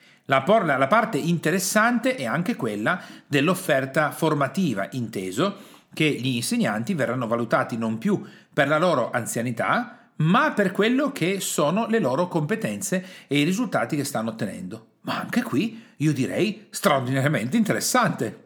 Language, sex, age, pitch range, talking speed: Italian, male, 40-59, 125-200 Hz, 140 wpm